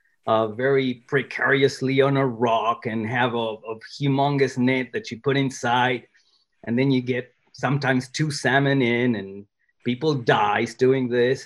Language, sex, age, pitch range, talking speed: English, male, 30-49, 120-160 Hz, 150 wpm